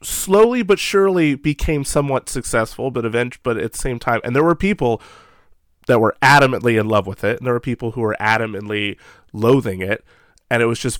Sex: male